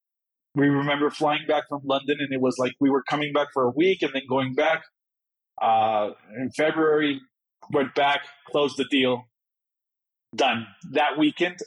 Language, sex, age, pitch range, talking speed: English, male, 40-59, 130-150 Hz, 165 wpm